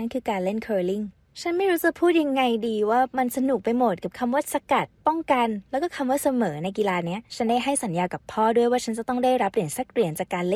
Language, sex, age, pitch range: Thai, female, 20-39, 185-250 Hz